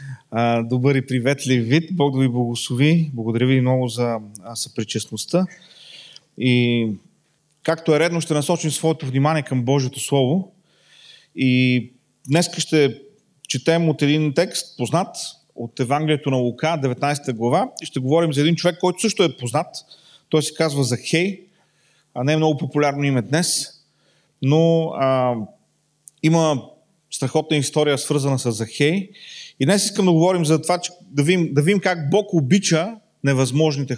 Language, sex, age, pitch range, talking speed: Bulgarian, male, 30-49, 130-170 Hz, 145 wpm